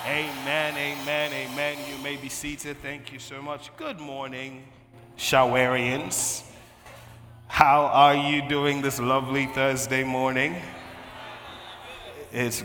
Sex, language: male, English